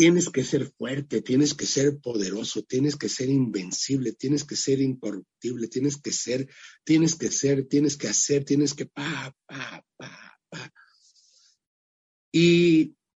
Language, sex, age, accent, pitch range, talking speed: English, male, 50-69, Mexican, 120-155 Hz, 145 wpm